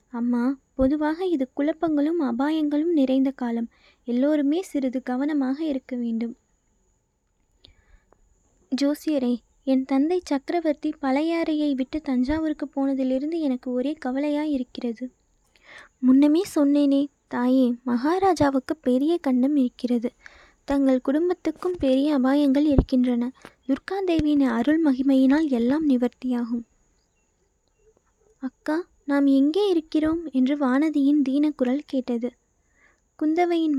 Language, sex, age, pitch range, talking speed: Tamil, female, 20-39, 260-305 Hz, 90 wpm